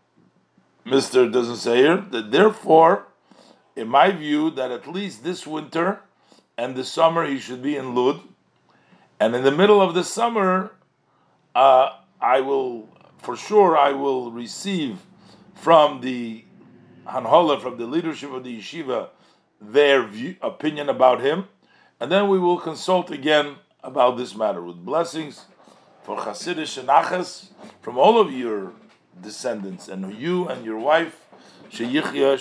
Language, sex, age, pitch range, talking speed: English, male, 50-69, 135-180 Hz, 140 wpm